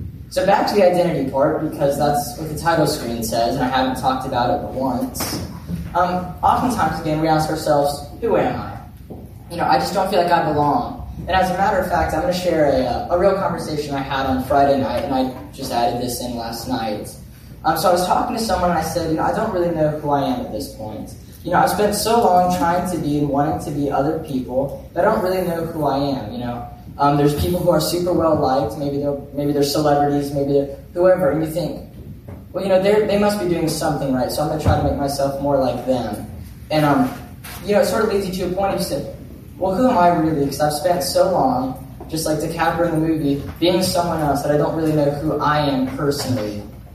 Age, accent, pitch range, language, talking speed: 10-29, American, 140-180 Hz, English, 250 wpm